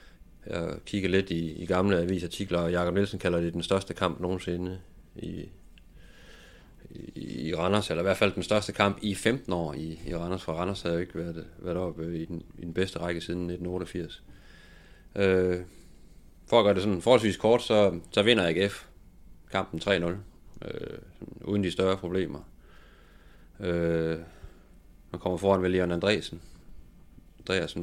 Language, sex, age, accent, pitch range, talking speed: Danish, male, 30-49, native, 85-95 Hz, 160 wpm